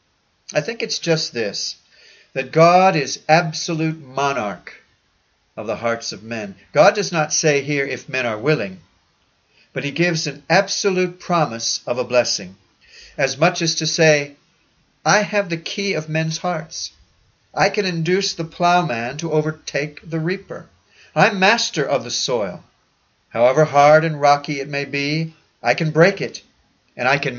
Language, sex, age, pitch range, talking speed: English, male, 50-69, 125-160 Hz, 160 wpm